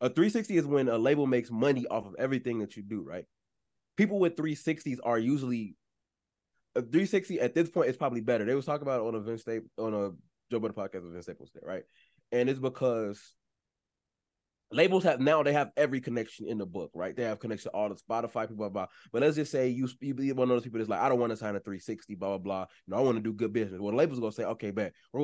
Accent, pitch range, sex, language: American, 105-130 Hz, male, English